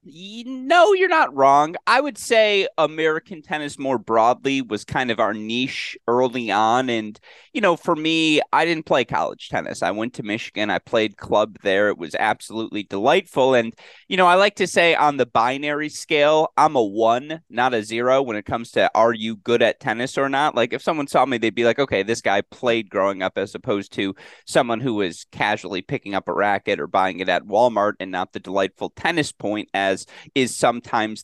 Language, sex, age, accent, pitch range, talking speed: English, male, 30-49, American, 105-150 Hz, 205 wpm